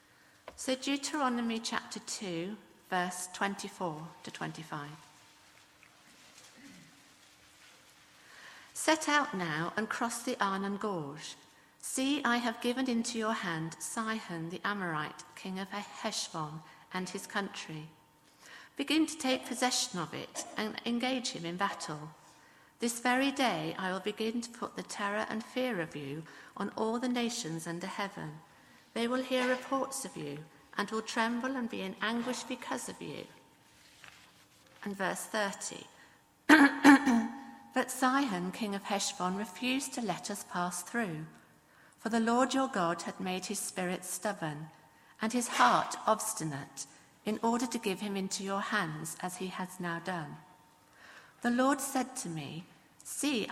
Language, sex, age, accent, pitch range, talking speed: English, female, 50-69, British, 180-245 Hz, 140 wpm